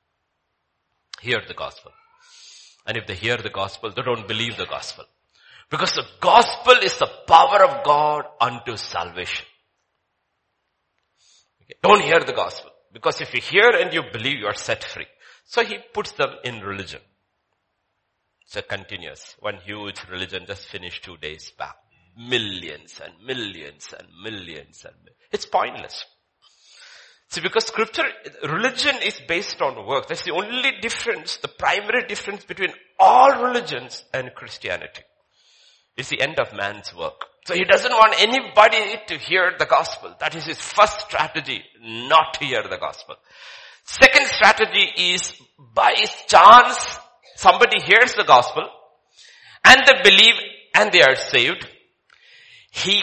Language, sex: English, male